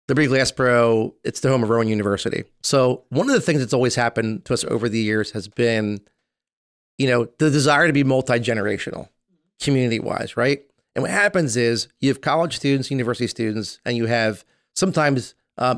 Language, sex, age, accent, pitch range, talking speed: English, male, 30-49, American, 115-140 Hz, 180 wpm